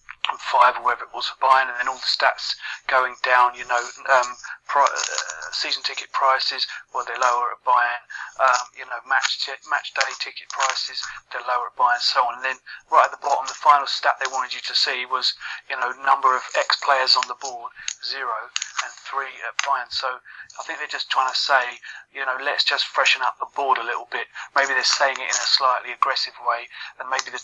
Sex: male